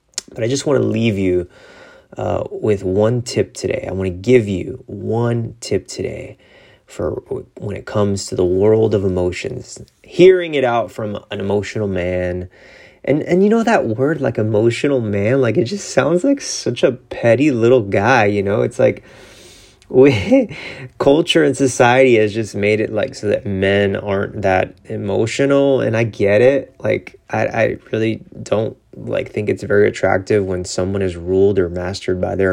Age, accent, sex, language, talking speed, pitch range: 30-49, American, male, English, 175 wpm, 100-130 Hz